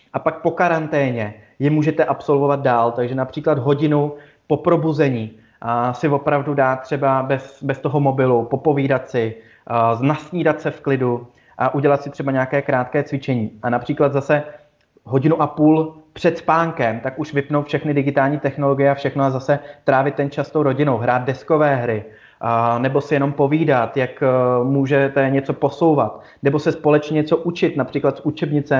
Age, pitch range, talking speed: 30-49, 130-150 Hz, 165 wpm